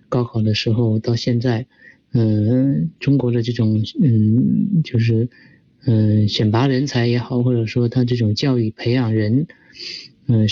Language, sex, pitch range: Chinese, male, 115-135 Hz